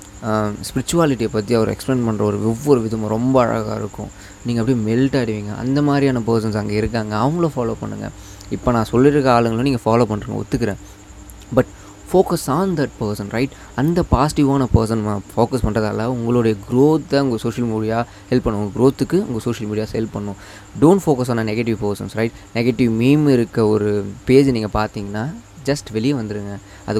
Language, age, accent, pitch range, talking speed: Tamil, 20-39, native, 105-120 Hz, 165 wpm